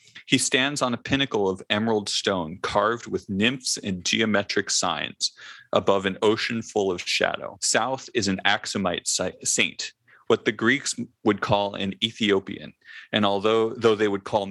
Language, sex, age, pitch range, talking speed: English, male, 30-49, 95-115 Hz, 155 wpm